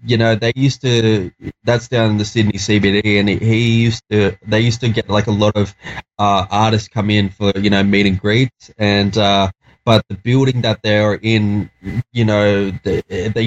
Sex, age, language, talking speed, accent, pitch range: male, 20-39, English, 195 wpm, Australian, 100-115 Hz